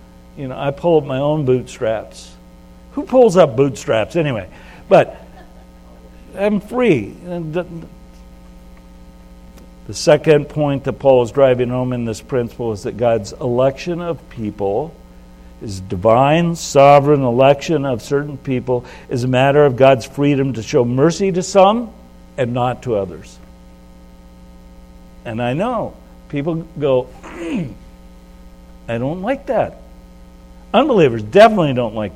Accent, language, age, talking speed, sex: American, English, 60-79, 130 wpm, male